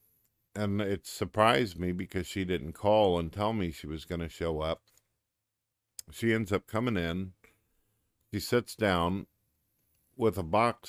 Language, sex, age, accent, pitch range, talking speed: English, male, 50-69, American, 85-105 Hz, 155 wpm